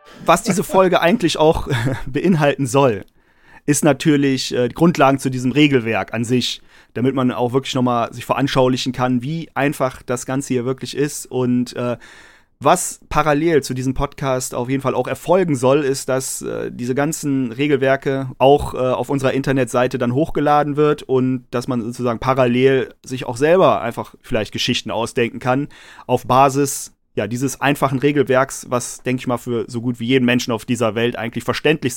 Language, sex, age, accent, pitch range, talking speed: German, male, 30-49, German, 120-140 Hz, 165 wpm